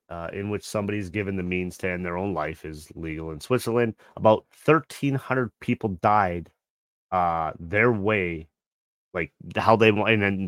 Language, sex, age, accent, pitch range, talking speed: English, male, 30-49, American, 90-115 Hz, 170 wpm